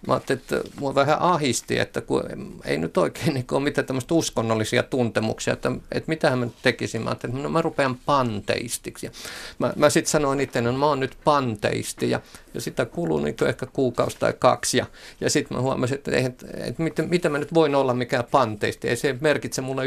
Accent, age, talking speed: native, 50-69, 210 wpm